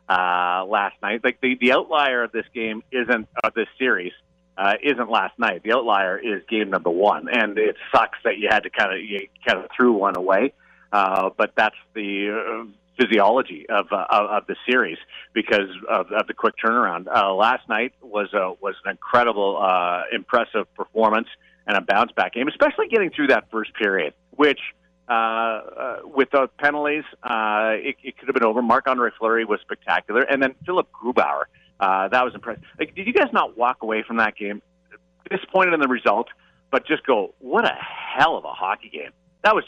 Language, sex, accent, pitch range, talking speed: English, male, American, 100-135 Hz, 200 wpm